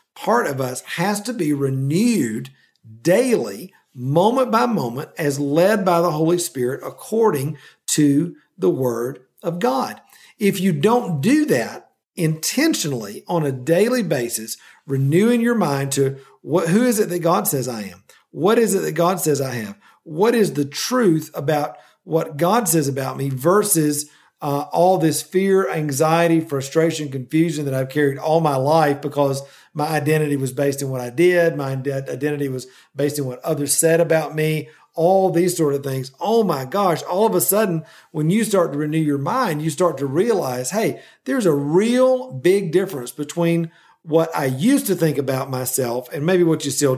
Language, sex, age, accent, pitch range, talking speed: English, male, 50-69, American, 140-180 Hz, 180 wpm